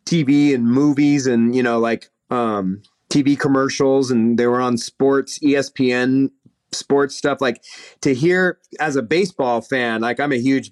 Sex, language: male, English